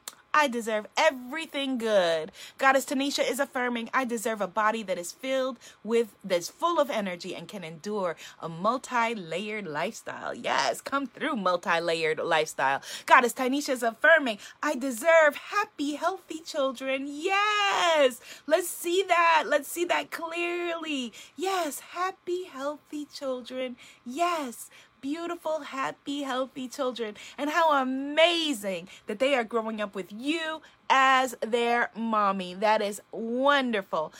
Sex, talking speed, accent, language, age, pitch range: female, 130 wpm, American, English, 20-39, 215-300 Hz